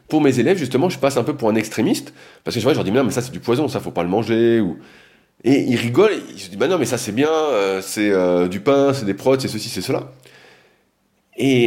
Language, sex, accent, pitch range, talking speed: French, male, French, 105-145 Hz, 285 wpm